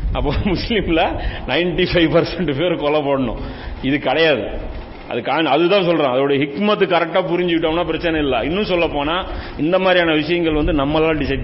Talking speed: 95 wpm